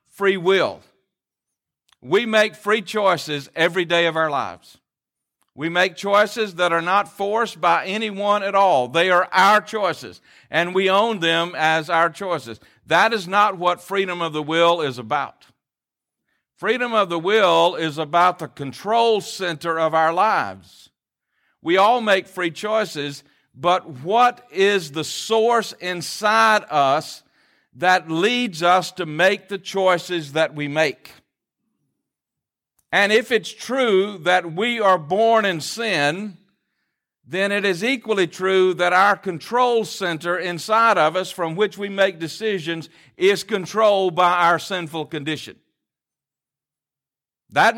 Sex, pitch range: male, 165-210 Hz